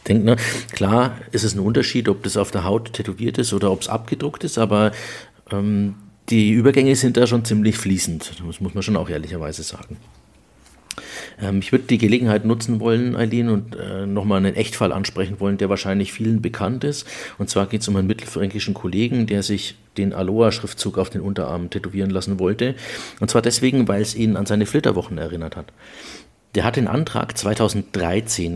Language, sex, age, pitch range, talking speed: German, male, 50-69, 95-115 Hz, 190 wpm